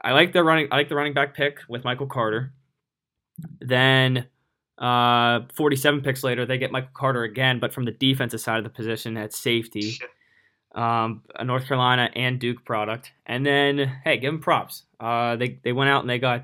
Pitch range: 115-130 Hz